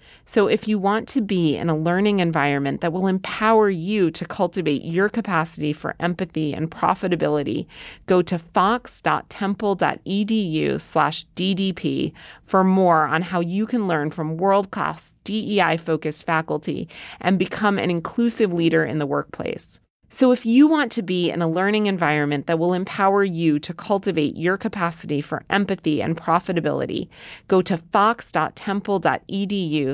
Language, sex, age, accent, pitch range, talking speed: English, female, 30-49, American, 160-200 Hz, 140 wpm